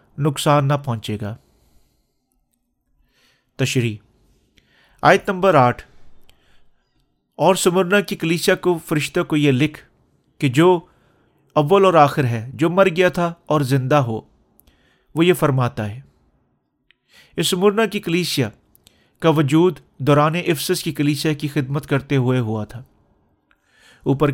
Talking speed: 125 wpm